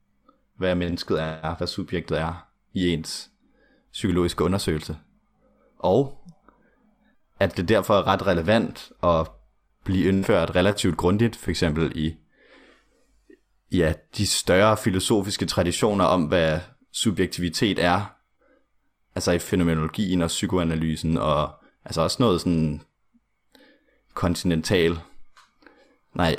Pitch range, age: 80-100 Hz, 30-49